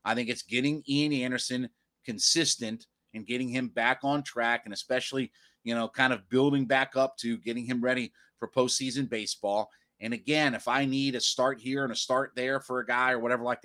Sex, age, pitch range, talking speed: male, 30-49, 115-140 Hz, 205 wpm